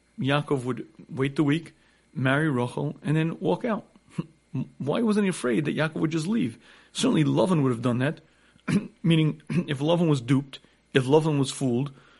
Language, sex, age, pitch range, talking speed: English, male, 40-59, 130-160 Hz, 170 wpm